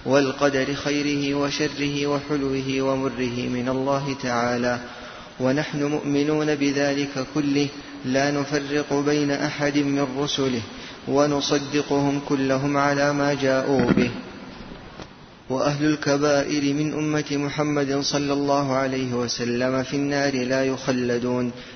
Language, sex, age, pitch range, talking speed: Arabic, male, 30-49, 130-145 Hz, 100 wpm